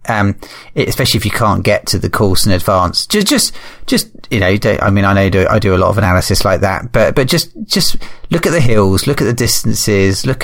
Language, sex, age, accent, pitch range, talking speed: English, male, 30-49, British, 100-120 Hz, 245 wpm